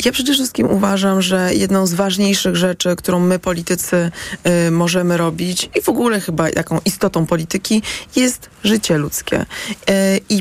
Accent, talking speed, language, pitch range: native, 145 wpm, Polish, 170-195 Hz